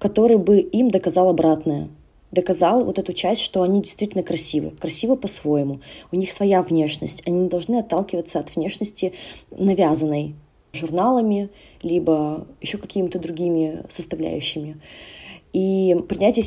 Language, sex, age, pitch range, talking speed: Russian, female, 20-39, 165-195 Hz, 120 wpm